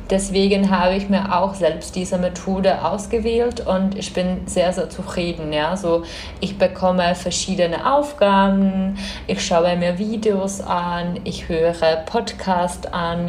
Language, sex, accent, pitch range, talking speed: Czech, female, German, 170-195 Hz, 135 wpm